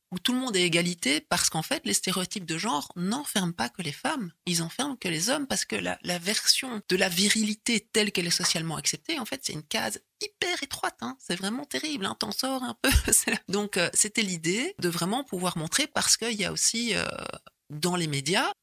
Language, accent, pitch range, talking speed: French, French, 165-225 Hz, 220 wpm